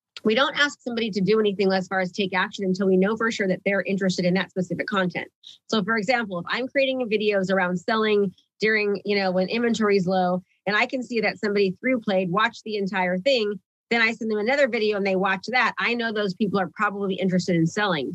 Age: 30-49